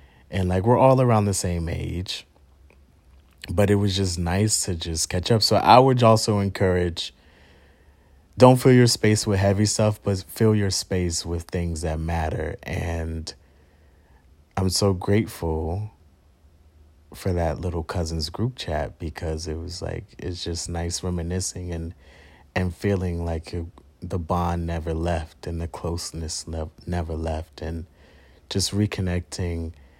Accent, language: American, English